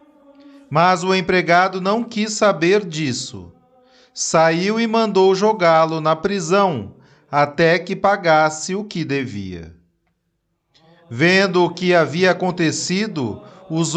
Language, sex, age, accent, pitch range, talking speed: Portuguese, male, 40-59, Brazilian, 160-215 Hz, 105 wpm